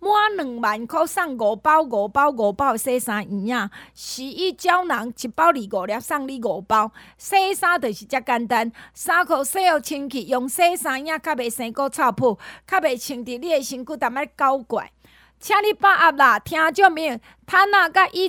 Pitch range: 230-315 Hz